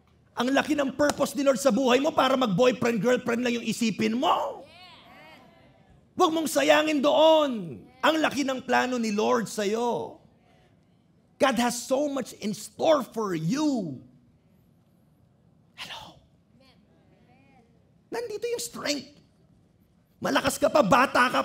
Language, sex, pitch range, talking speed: English, male, 215-295 Hz, 125 wpm